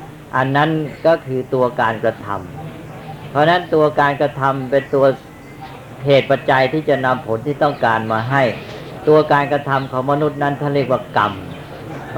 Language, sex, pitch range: Thai, female, 130-155 Hz